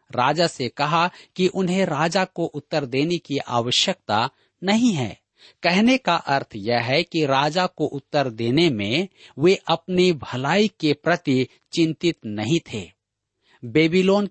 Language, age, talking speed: Hindi, 50-69, 140 wpm